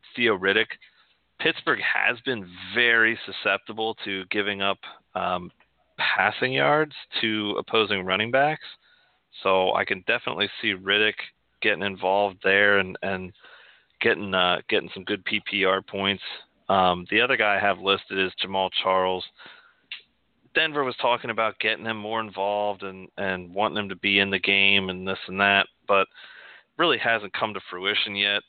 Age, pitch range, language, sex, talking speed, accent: 30-49, 95-110 Hz, English, male, 155 wpm, American